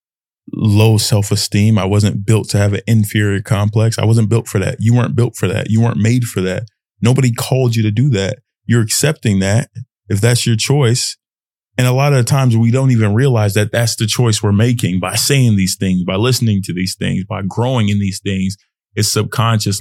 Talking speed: 210 wpm